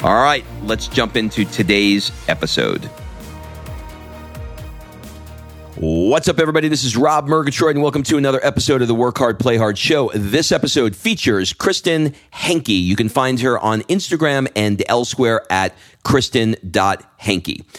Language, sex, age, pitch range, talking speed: English, male, 40-59, 95-130 Hz, 140 wpm